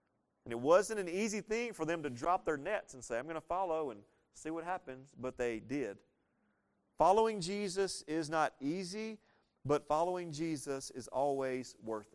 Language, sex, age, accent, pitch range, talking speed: English, male, 40-59, American, 135-195 Hz, 180 wpm